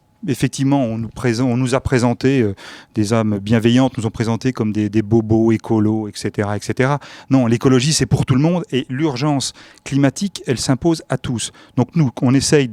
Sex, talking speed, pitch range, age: male, 190 wpm, 115-140 Hz, 40-59